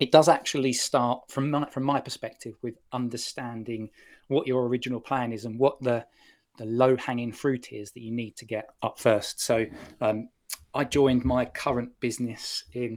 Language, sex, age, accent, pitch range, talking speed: English, male, 20-39, British, 115-130 Hz, 170 wpm